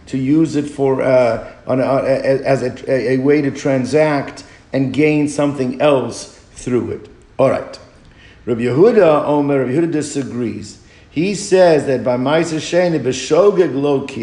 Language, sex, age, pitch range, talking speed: English, male, 50-69, 135-160 Hz, 135 wpm